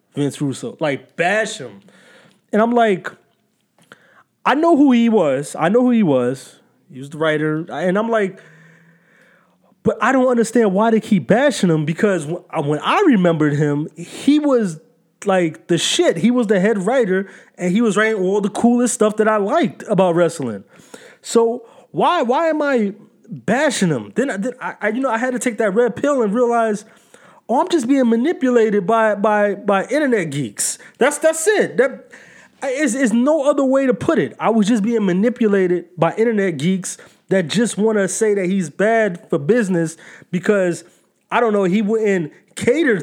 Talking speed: 185 wpm